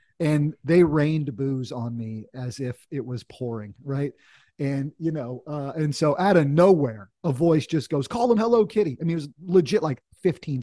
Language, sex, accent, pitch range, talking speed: English, male, American, 130-170 Hz, 205 wpm